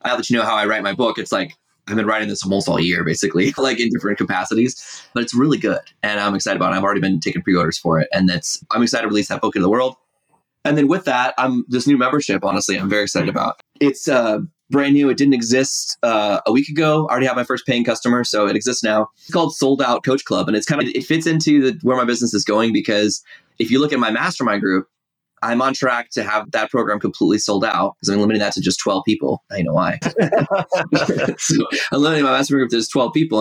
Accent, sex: American, male